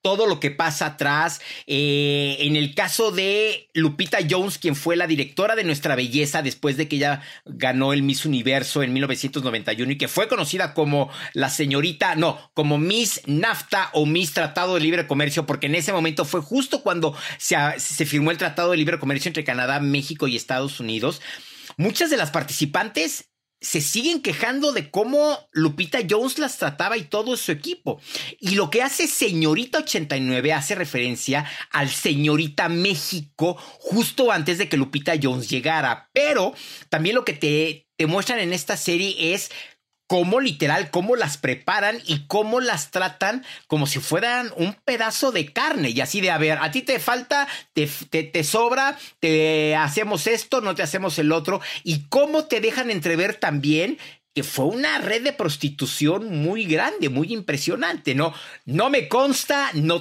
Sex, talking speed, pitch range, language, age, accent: male, 170 wpm, 150-205 Hz, Spanish, 40-59, Mexican